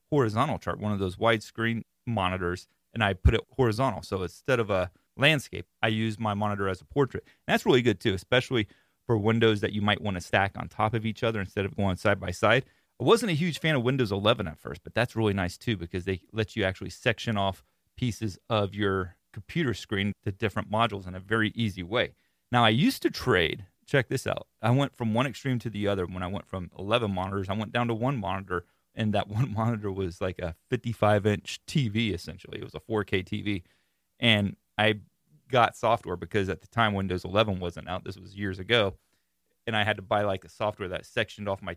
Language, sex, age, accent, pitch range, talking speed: English, male, 30-49, American, 95-120 Hz, 225 wpm